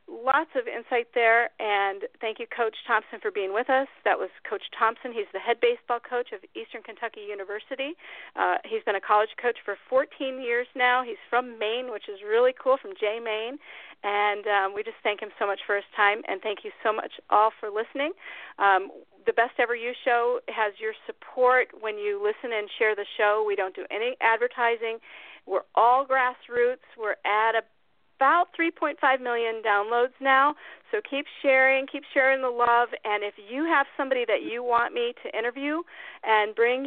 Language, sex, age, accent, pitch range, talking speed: English, female, 40-59, American, 210-265 Hz, 190 wpm